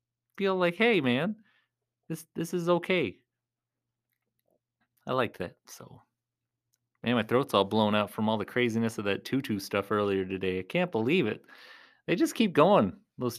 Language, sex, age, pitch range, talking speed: English, male, 30-49, 115-175 Hz, 165 wpm